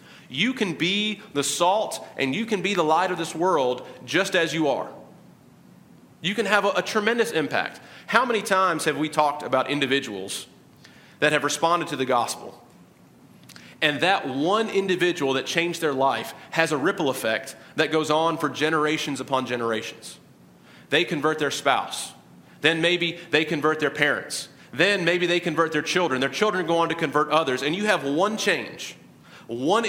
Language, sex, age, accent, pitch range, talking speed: English, male, 40-59, American, 135-175 Hz, 175 wpm